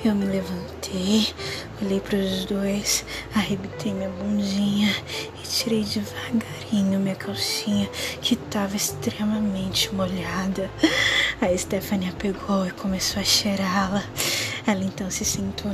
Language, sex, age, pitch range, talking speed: Portuguese, female, 10-29, 195-220 Hz, 120 wpm